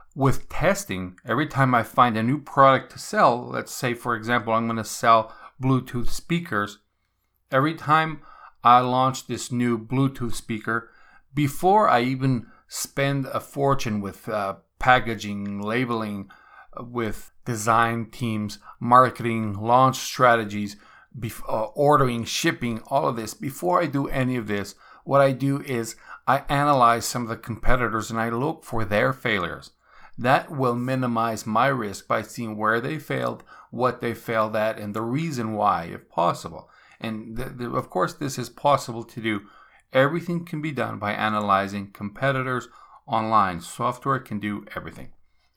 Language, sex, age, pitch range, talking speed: English, male, 40-59, 110-135 Hz, 150 wpm